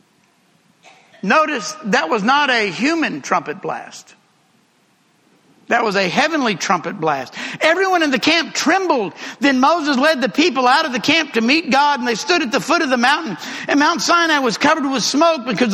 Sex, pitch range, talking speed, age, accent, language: male, 230-310 Hz, 185 wpm, 60-79, American, English